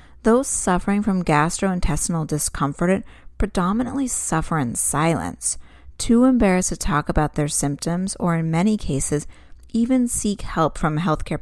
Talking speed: 130 wpm